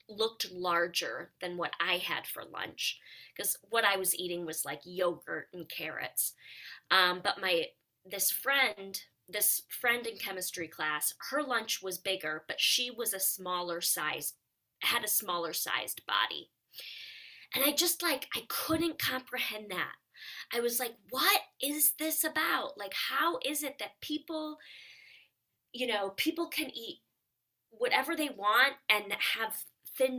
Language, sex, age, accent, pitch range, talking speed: English, female, 20-39, American, 180-260 Hz, 150 wpm